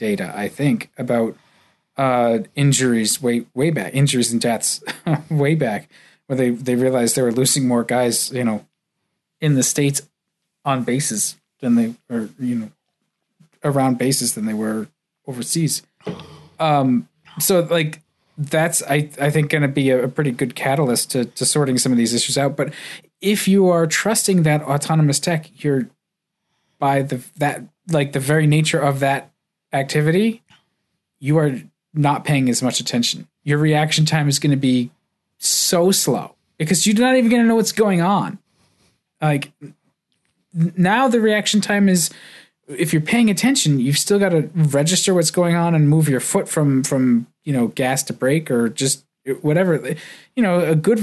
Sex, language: male, English